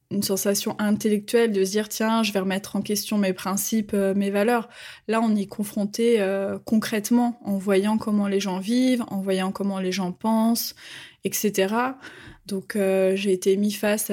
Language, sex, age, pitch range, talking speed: French, female, 20-39, 195-235 Hz, 185 wpm